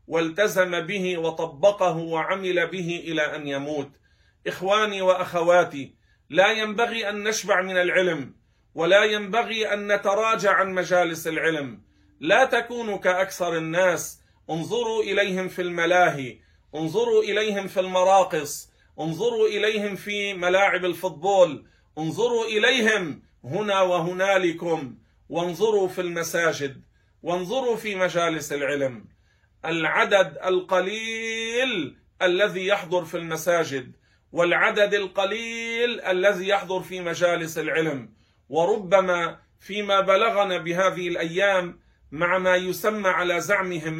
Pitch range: 165-200 Hz